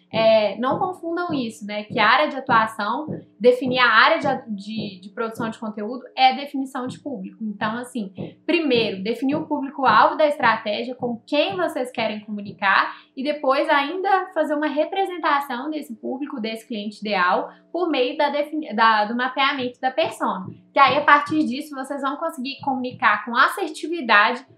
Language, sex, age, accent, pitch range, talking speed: English, female, 10-29, Brazilian, 230-300 Hz, 150 wpm